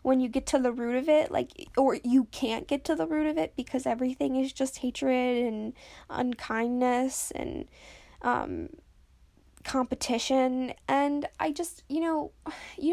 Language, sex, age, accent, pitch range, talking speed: English, female, 10-29, American, 230-275 Hz, 160 wpm